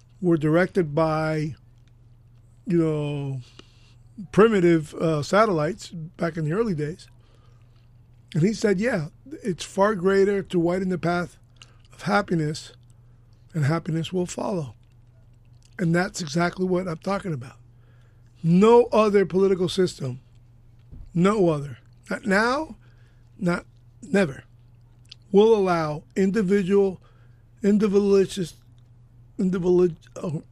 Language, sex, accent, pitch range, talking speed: English, male, American, 120-185 Hz, 105 wpm